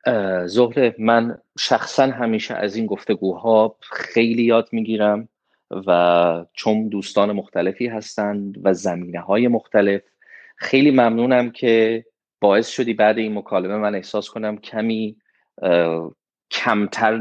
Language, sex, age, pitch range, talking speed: Persian, male, 30-49, 95-115 Hz, 120 wpm